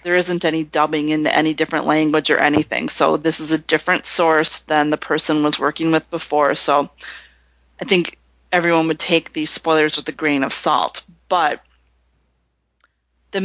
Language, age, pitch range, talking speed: English, 30-49, 155-180 Hz, 170 wpm